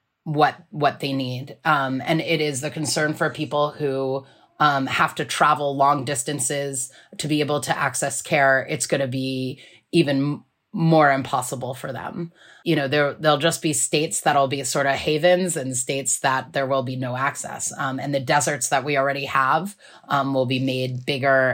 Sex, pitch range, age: female, 135-160 Hz, 30-49